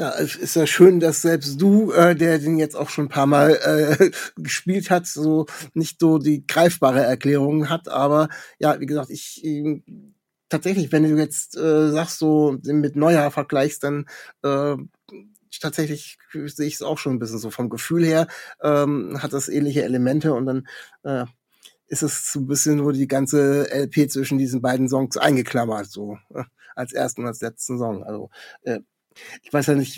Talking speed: 185 wpm